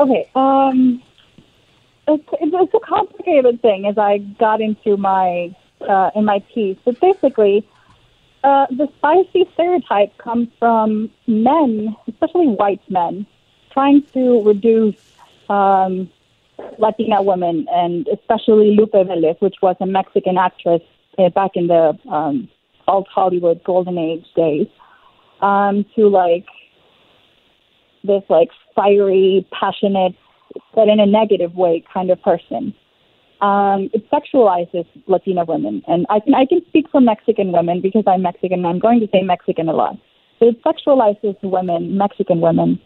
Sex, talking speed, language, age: female, 135 wpm, English, 30-49